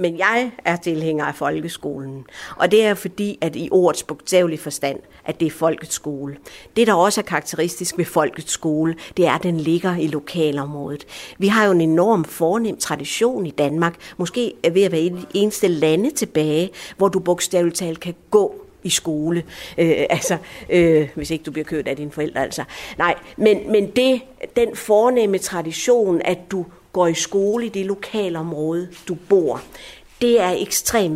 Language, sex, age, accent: Danish, female, 60-79, native